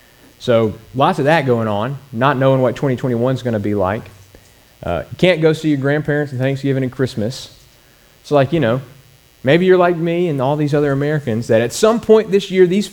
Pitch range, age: 105-140 Hz, 30-49